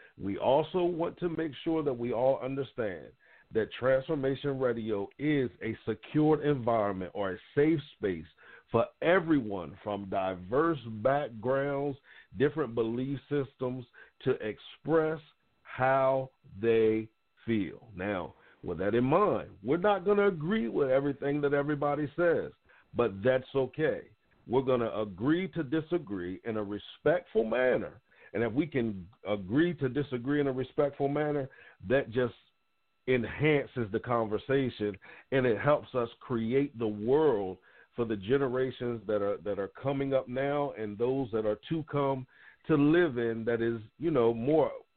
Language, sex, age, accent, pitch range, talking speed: English, male, 50-69, American, 115-145 Hz, 145 wpm